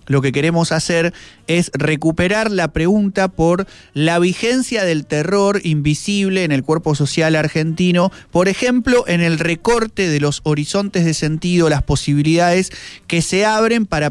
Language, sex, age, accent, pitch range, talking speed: Spanish, male, 30-49, Argentinian, 150-190 Hz, 150 wpm